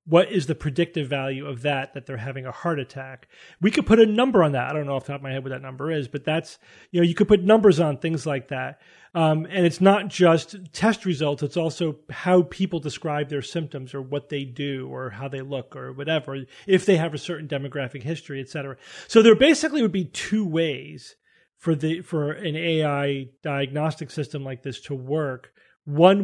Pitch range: 140-180 Hz